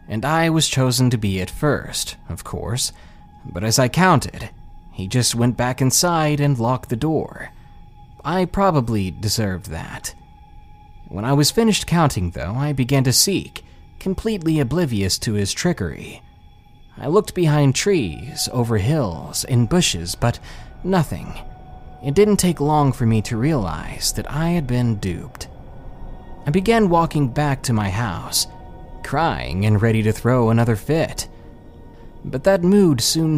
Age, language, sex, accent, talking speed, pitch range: 30-49, English, male, American, 150 wpm, 100-150 Hz